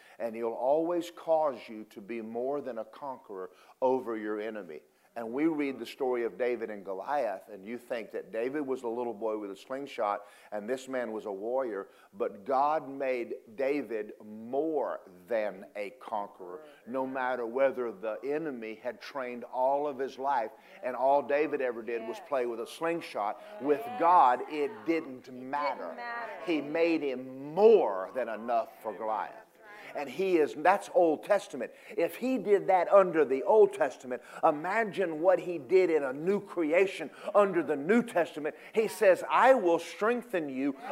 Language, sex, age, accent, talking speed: English, male, 50-69, American, 170 wpm